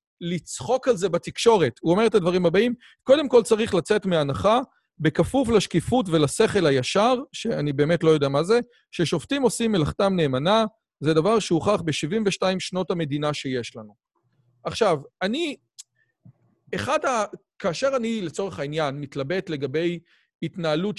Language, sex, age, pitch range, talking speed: Hebrew, male, 40-59, 160-220 Hz, 135 wpm